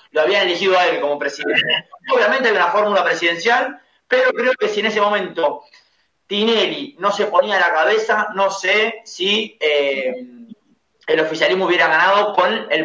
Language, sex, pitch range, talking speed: Spanish, male, 185-250 Hz, 170 wpm